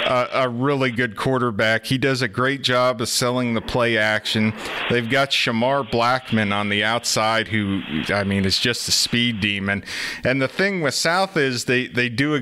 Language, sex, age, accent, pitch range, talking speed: English, male, 40-59, American, 115-140 Hz, 190 wpm